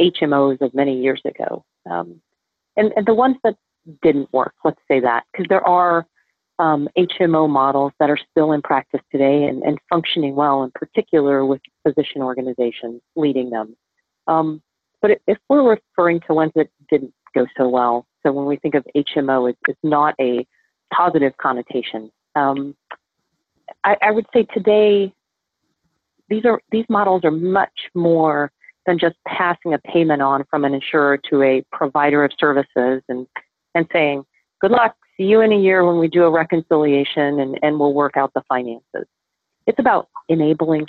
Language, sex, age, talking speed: English, female, 40-59, 165 wpm